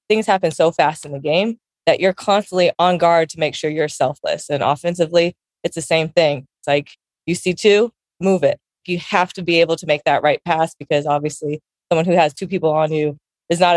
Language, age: English, 20-39